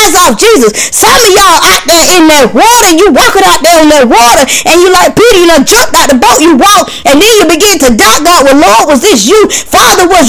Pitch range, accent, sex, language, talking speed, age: 345-430 Hz, American, female, English, 250 wpm, 20-39